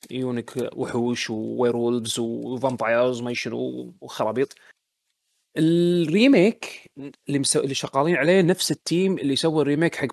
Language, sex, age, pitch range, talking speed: Arabic, male, 30-49, 120-150 Hz, 120 wpm